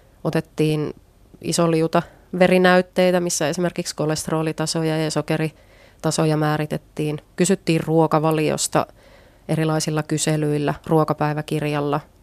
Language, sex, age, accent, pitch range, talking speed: Finnish, female, 30-49, native, 155-175 Hz, 70 wpm